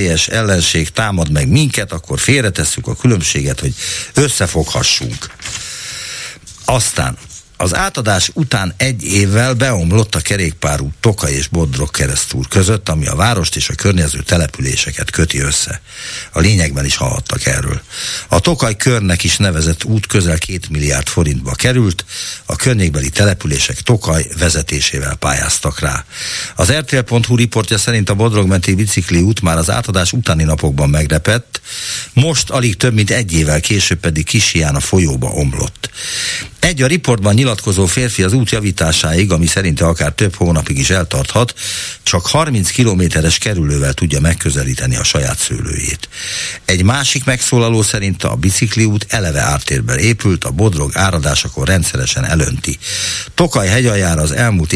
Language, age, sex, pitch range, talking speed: Hungarian, 60-79, male, 80-115 Hz, 135 wpm